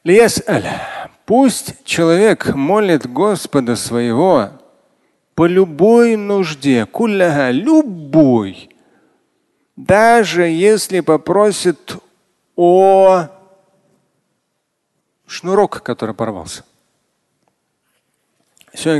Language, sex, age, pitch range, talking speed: Russian, male, 40-59, 125-195 Hz, 60 wpm